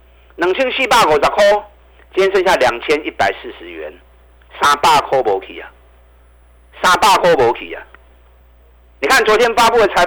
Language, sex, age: Chinese, male, 50-69